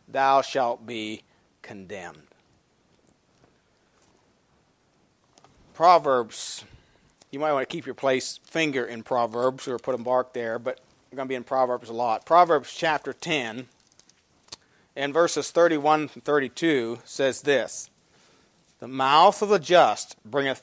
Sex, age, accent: male, 40-59, American